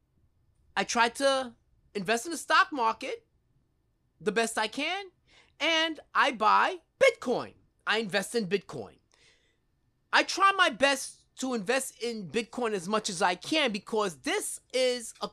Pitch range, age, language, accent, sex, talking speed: 220-290 Hz, 30-49, English, American, male, 145 wpm